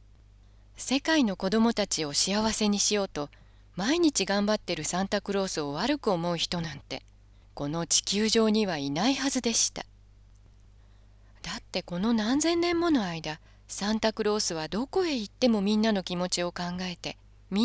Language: Japanese